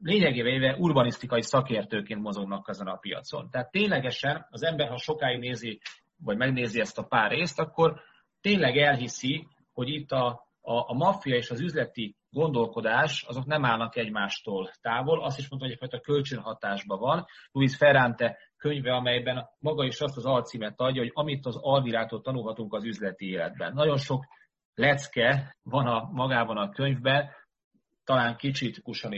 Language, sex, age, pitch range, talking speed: Hungarian, male, 30-49, 115-145 Hz, 155 wpm